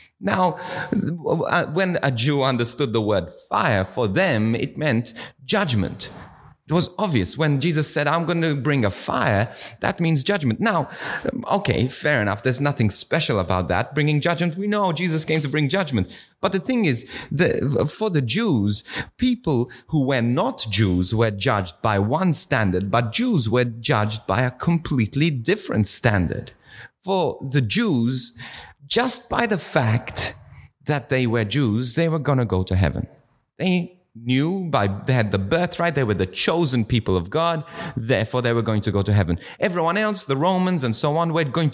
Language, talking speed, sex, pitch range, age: English, 175 wpm, male, 110-160 Hz, 30-49